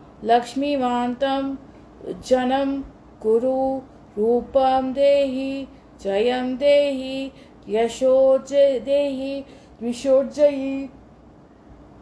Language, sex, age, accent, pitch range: Hindi, female, 30-49, native, 250-280 Hz